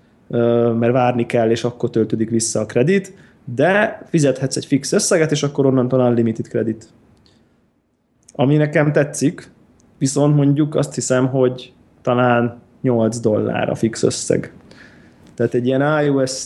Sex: male